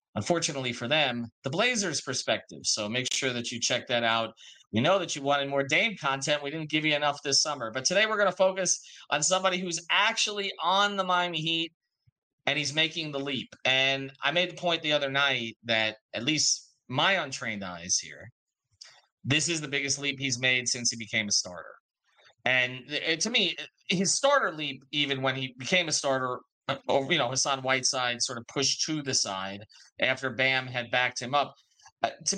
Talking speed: 195 wpm